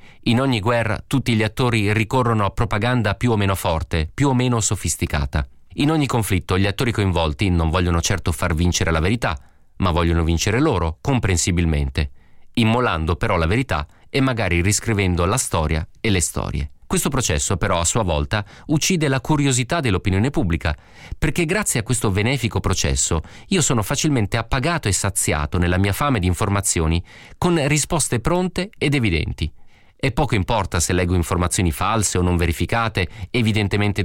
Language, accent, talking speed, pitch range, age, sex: Italian, native, 160 wpm, 90-125 Hz, 30-49, male